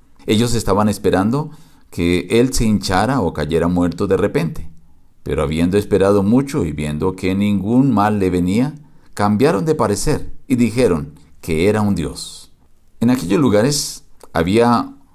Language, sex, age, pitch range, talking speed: Spanish, male, 50-69, 90-120 Hz, 145 wpm